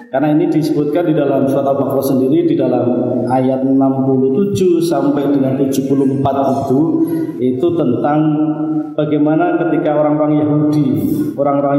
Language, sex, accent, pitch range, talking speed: Indonesian, male, native, 135-160 Hz, 115 wpm